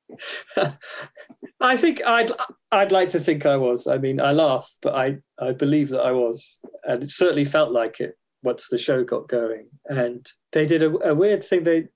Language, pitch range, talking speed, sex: English, 125-160 Hz, 195 wpm, male